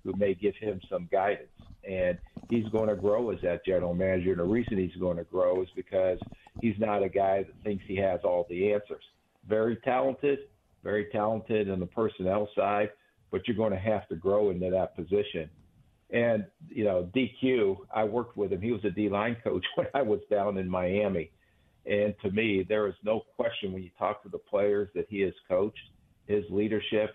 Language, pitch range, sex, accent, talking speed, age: English, 95-110 Hz, male, American, 205 wpm, 50-69